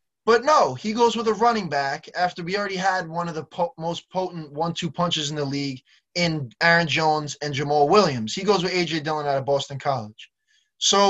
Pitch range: 145-200 Hz